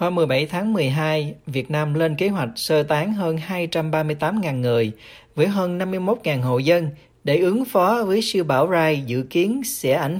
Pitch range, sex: 140-185 Hz, male